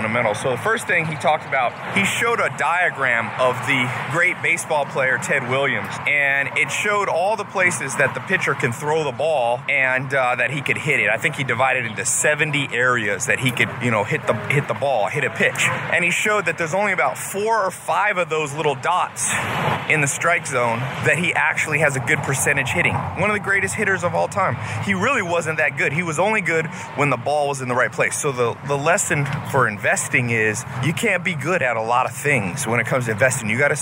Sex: male